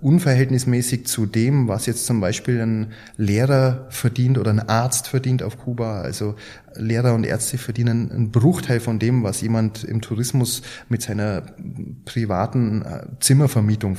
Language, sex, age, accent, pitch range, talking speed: German, male, 20-39, German, 110-130 Hz, 140 wpm